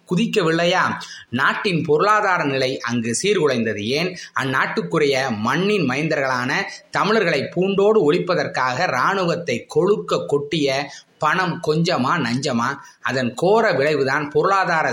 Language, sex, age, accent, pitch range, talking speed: Tamil, male, 20-39, native, 140-190 Hz, 90 wpm